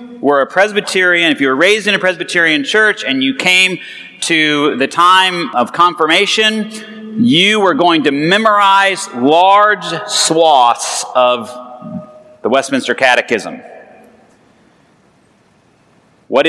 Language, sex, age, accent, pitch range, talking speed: English, male, 30-49, American, 165-220 Hz, 115 wpm